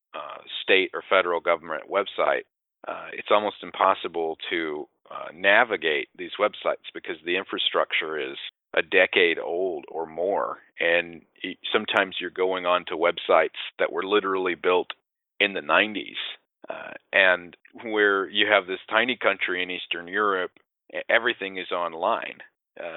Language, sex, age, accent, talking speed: English, male, 40-59, American, 140 wpm